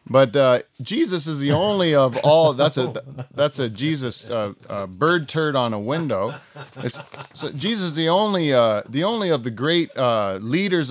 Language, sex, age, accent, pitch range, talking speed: English, male, 30-49, American, 120-160 Hz, 185 wpm